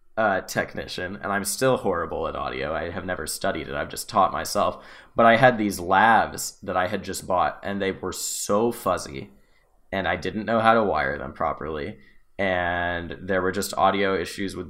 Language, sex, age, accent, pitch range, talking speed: English, male, 20-39, American, 90-115 Hz, 190 wpm